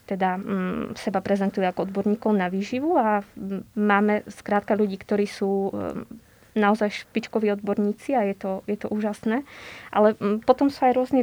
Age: 20-39